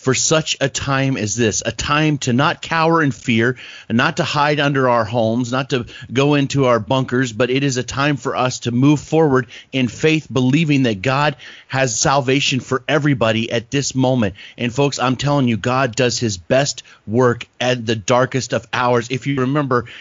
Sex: male